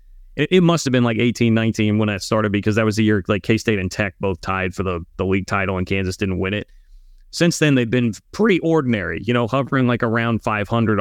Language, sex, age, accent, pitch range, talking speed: English, male, 30-49, American, 100-125 Hz, 235 wpm